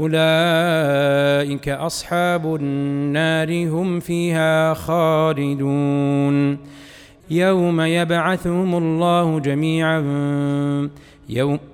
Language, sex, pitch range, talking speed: Arabic, male, 145-175 Hz, 55 wpm